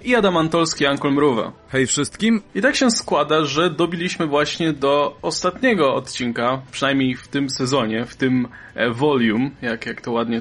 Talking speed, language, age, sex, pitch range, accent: 160 wpm, Polish, 20-39, male, 120-170 Hz, native